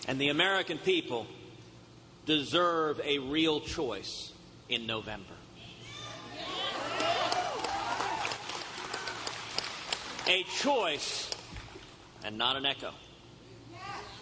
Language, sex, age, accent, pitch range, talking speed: English, male, 50-69, American, 135-215 Hz, 70 wpm